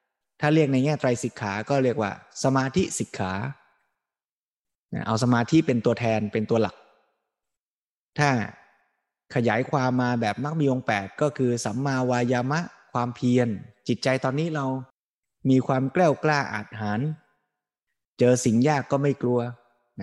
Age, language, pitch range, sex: 20-39, Thai, 115-140 Hz, male